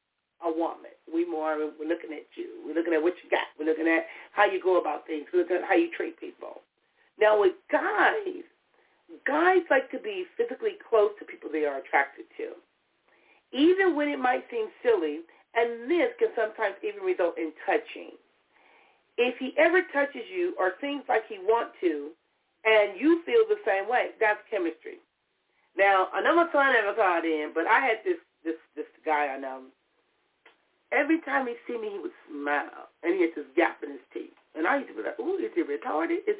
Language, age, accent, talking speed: English, 40-59, American, 200 wpm